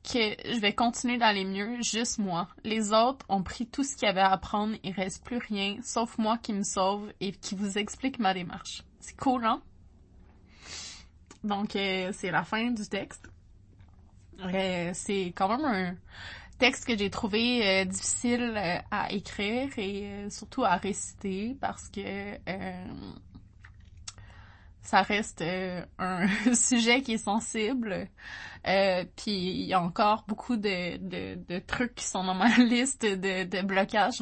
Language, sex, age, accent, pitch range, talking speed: French, female, 20-39, Canadian, 185-225 Hz, 160 wpm